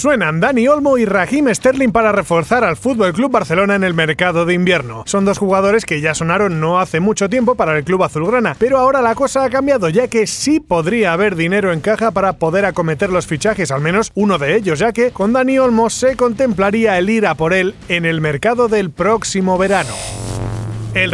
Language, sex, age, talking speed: Spanish, male, 30-49, 210 wpm